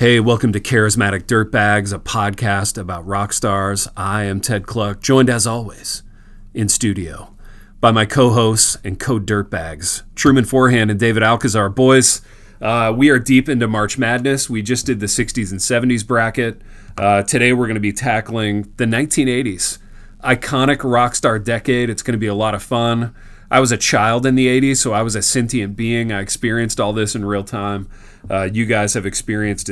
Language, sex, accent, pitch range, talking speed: English, male, American, 100-120 Hz, 180 wpm